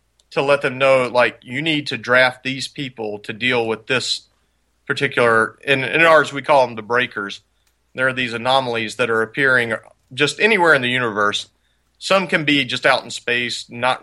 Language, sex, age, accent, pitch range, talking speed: English, male, 40-59, American, 115-140 Hz, 190 wpm